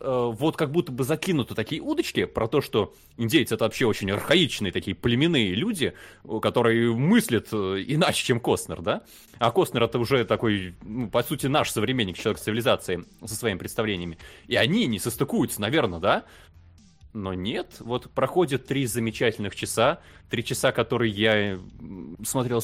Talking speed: 150 wpm